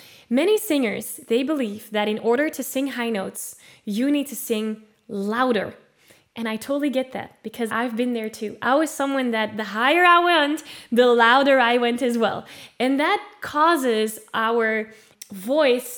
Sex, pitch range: female, 220-275 Hz